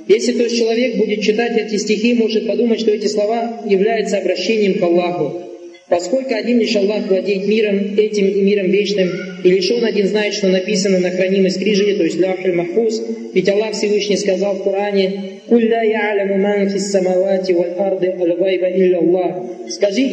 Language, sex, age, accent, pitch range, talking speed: Russian, male, 20-39, native, 175-210 Hz, 150 wpm